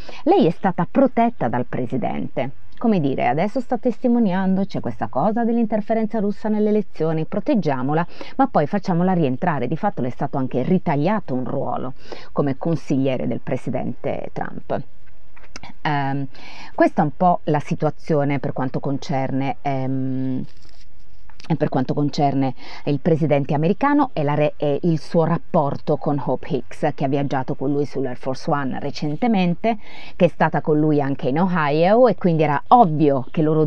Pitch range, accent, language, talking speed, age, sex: 140-190 Hz, native, Italian, 155 wpm, 30-49, female